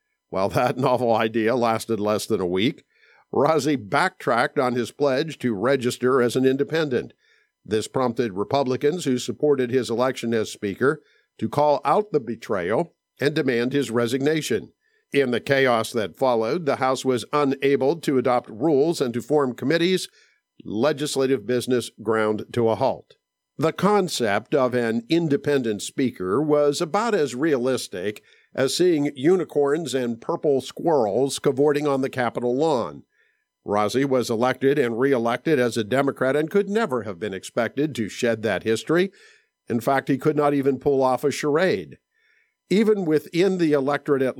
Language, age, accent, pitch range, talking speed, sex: English, 50-69, American, 120-150 Hz, 155 wpm, male